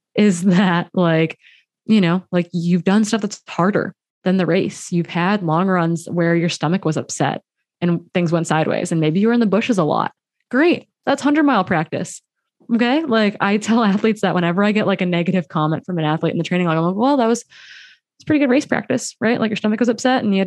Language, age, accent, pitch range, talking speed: English, 20-39, American, 170-220 Hz, 230 wpm